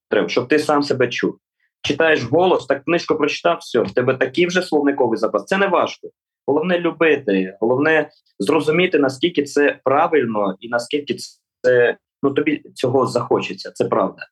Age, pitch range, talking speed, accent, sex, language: 20-39, 120-160 Hz, 150 wpm, native, male, Ukrainian